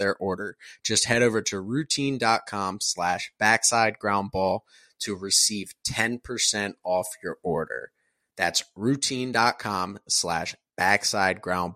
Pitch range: 100-120 Hz